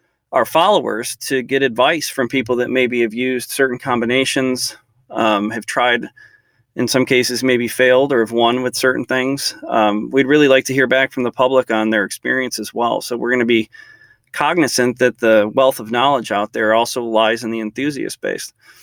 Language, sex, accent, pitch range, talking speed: English, male, American, 115-130 Hz, 195 wpm